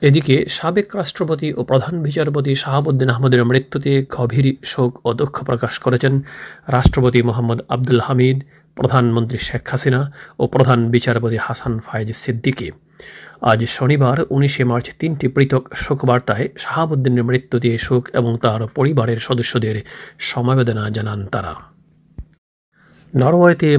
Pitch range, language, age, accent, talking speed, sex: 120-135 Hz, Bengali, 40-59, native, 120 wpm, male